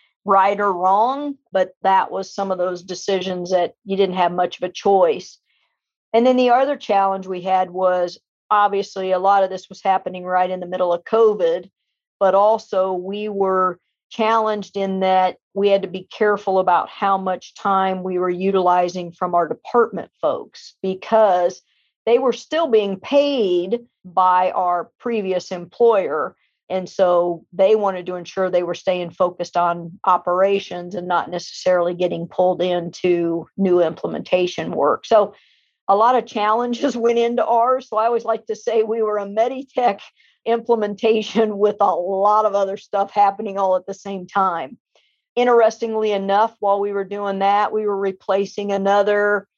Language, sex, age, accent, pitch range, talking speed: English, female, 50-69, American, 185-215 Hz, 165 wpm